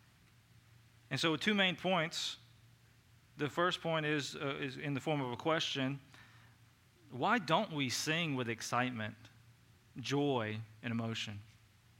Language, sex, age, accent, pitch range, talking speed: English, male, 30-49, American, 115-150 Hz, 135 wpm